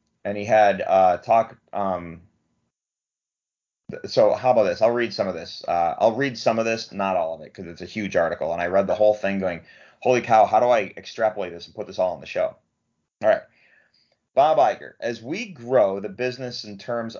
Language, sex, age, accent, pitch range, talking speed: English, male, 30-49, American, 100-120 Hz, 215 wpm